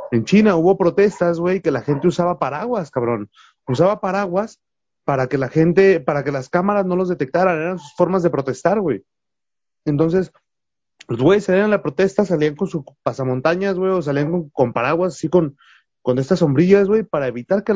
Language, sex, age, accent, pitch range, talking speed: Spanish, male, 30-49, Mexican, 140-185 Hz, 190 wpm